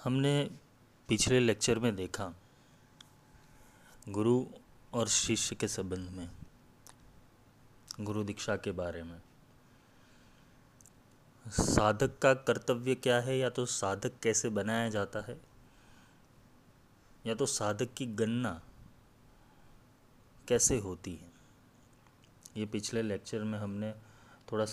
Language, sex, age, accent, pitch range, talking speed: Hindi, male, 30-49, native, 110-130 Hz, 100 wpm